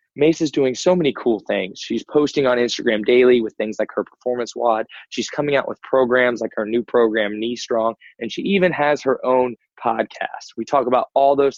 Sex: male